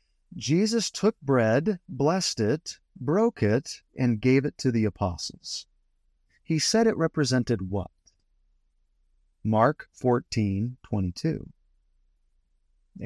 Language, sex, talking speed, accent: English, male, 95 wpm, American